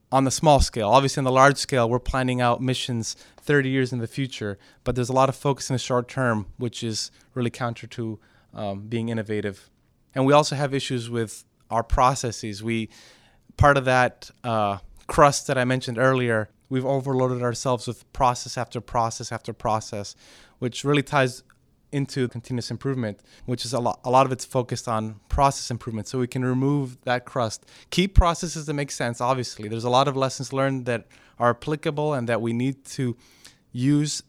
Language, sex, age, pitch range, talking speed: English, male, 20-39, 115-135 Hz, 190 wpm